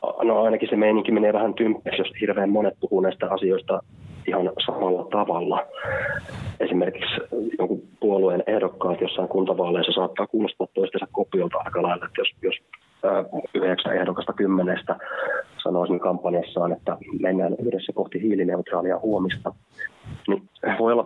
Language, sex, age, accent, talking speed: Finnish, male, 20-39, native, 130 wpm